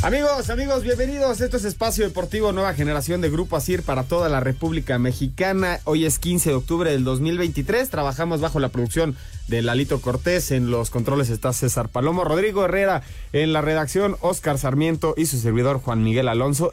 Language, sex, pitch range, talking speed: Spanish, male, 130-180 Hz, 180 wpm